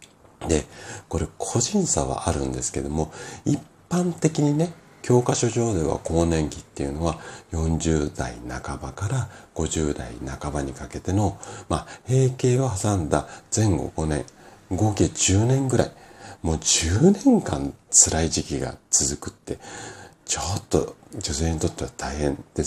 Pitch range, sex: 75-120 Hz, male